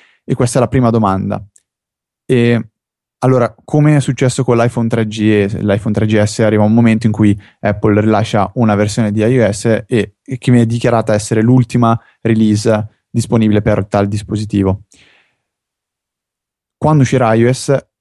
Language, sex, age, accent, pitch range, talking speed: Italian, male, 20-39, native, 110-125 Hz, 145 wpm